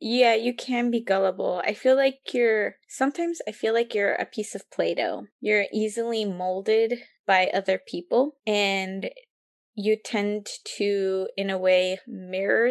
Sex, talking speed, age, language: female, 150 wpm, 10-29, English